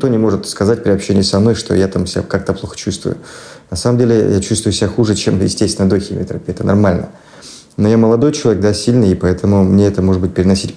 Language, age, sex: Russian, 30-49, male